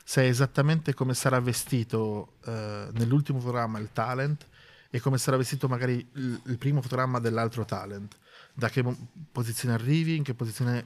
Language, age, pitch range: Italian, 20-39, 120-140 Hz